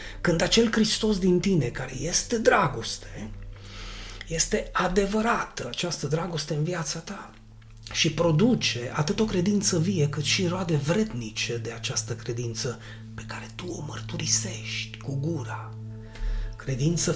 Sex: male